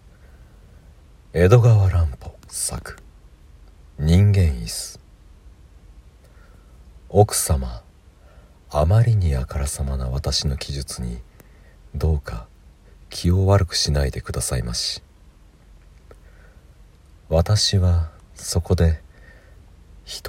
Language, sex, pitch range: Japanese, male, 70-85 Hz